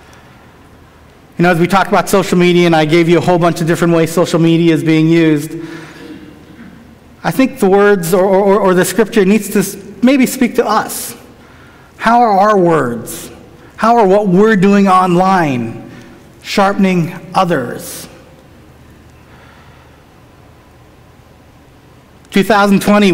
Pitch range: 170-205 Hz